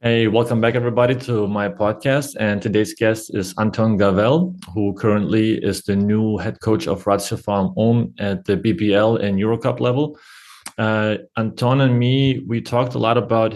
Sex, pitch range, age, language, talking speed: male, 100-115 Hz, 30-49, English, 170 wpm